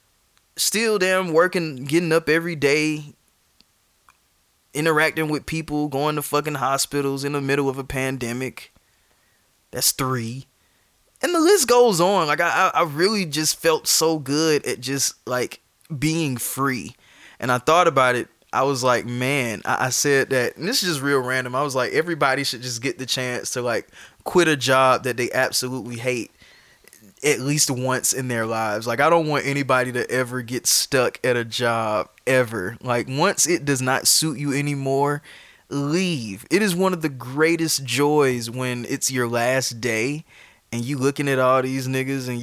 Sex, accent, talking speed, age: male, American, 175 wpm, 20-39